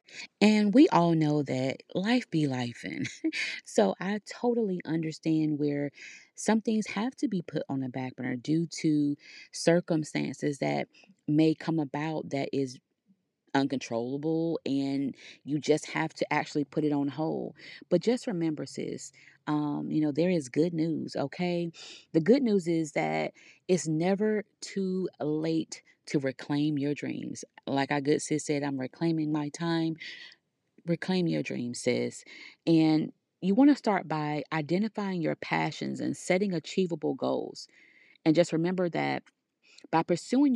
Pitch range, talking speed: 150-185 Hz, 150 wpm